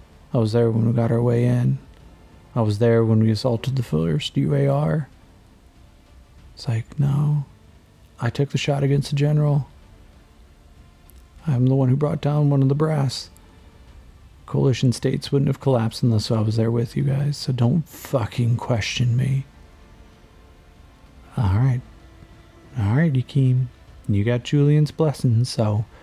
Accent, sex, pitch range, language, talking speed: American, male, 100-130 Hz, English, 150 wpm